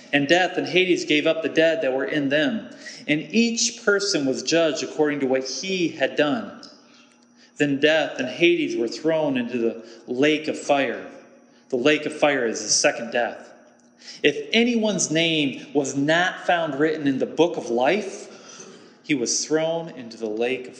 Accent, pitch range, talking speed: American, 150-230 Hz, 175 wpm